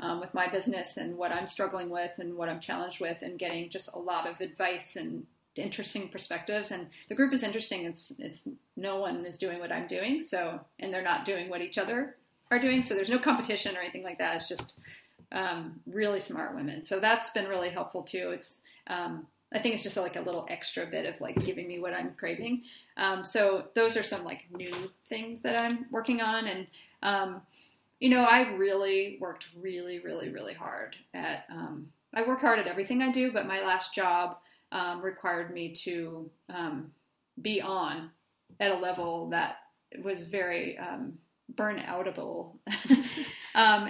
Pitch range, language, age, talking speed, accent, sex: 180-225 Hz, English, 40-59, 190 wpm, American, female